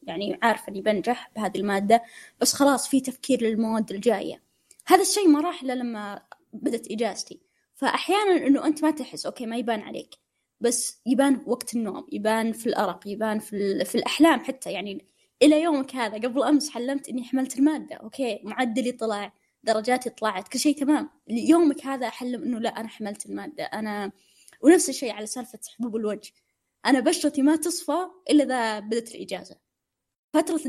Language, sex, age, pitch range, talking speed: Arabic, female, 20-39, 225-285 Hz, 160 wpm